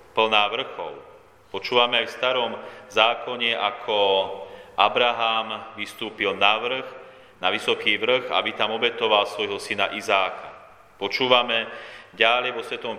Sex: male